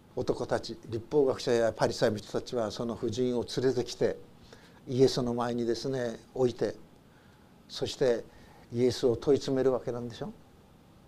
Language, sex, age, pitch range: Japanese, male, 60-79, 125-165 Hz